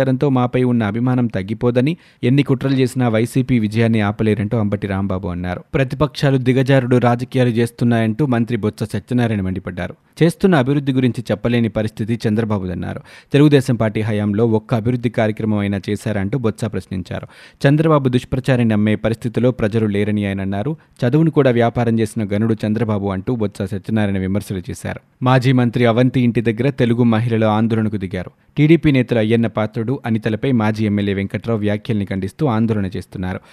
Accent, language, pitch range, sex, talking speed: native, Telugu, 105-130 Hz, male, 130 wpm